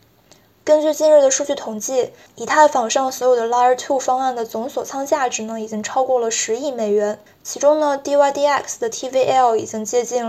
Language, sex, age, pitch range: Chinese, female, 20-39, 235-280 Hz